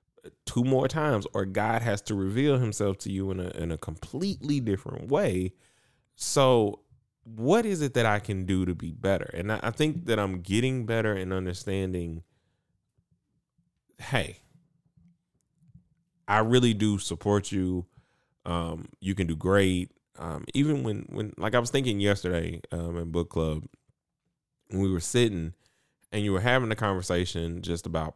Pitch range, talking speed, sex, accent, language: 90-120 Hz, 160 wpm, male, American, English